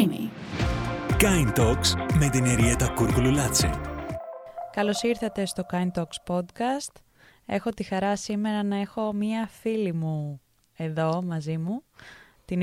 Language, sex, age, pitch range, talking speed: Greek, female, 20-39, 170-210 Hz, 100 wpm